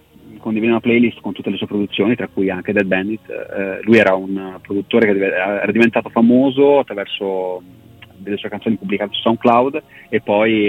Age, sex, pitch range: 30-49, male, 95-110 Hz